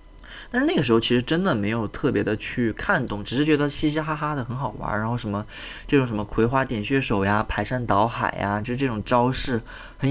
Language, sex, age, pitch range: Chinese, male, 20-39, 100-120 Hz